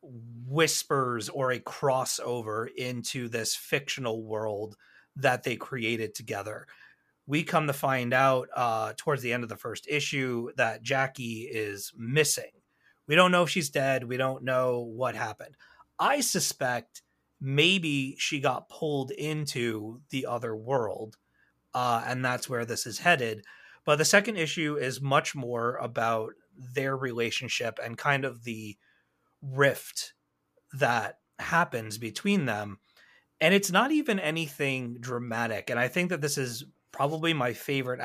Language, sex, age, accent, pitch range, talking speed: English, male, 30-49, American, 115-145 Hz, 145 wpm